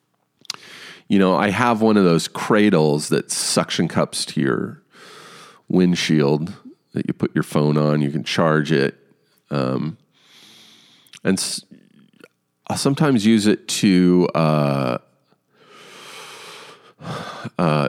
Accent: American